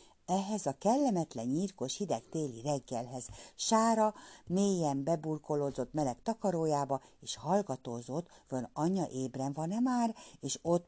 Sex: female